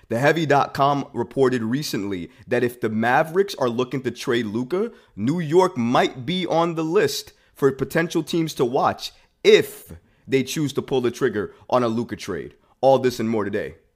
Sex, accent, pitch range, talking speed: male, American, 110-155 Hz, 170 wpm